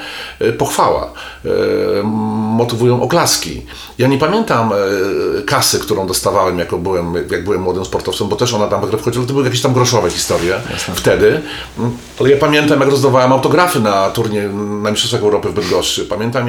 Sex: male